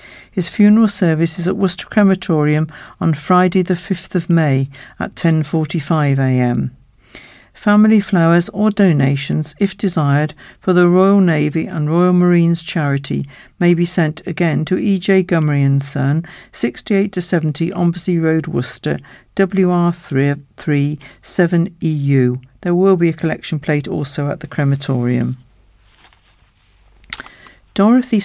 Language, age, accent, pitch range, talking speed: English, 60-79, British, 145-185 Hz, 135 wpm